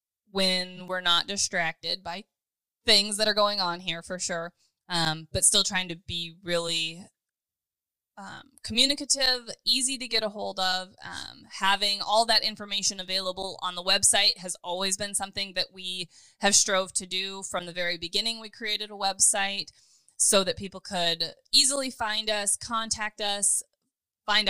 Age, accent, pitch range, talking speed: 20-39, American, 175-210 Hz, 160 wpm